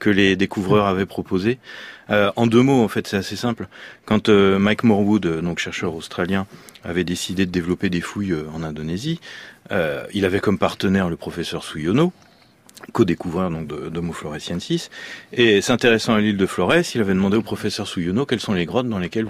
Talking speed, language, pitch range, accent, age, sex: 185 wpm, French, 90-115 Hz, French, 40-59, male